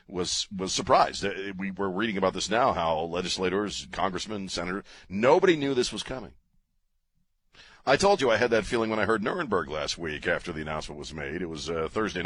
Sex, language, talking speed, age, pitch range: male, English, 195 wpm, 40-59, 85-100 Hz